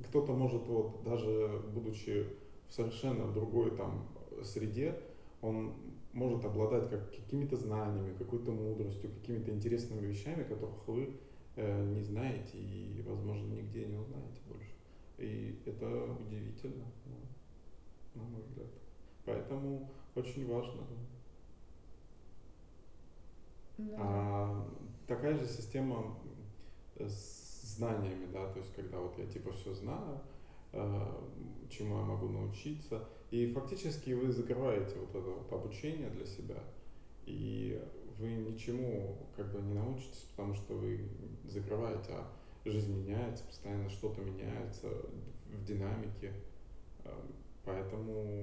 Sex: male